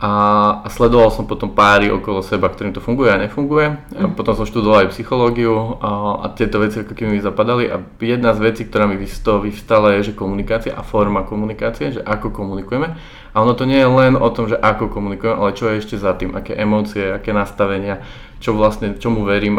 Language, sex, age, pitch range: Slovak, male, 20-39, 105-115 Hz